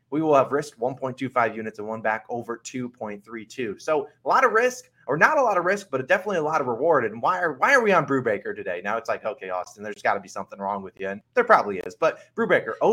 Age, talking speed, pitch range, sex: 20-39, 265 wpm, 130-170 Hz, male